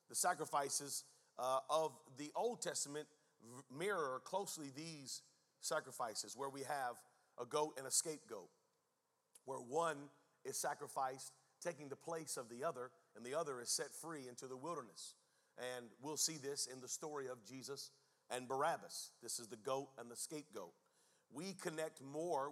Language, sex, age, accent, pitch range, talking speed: English, male, 40-59, American, 135-180 Hz, 155 wpm